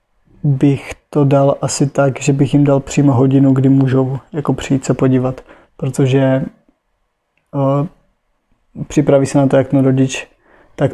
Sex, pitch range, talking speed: male, 130-140 Hz, 150 wpm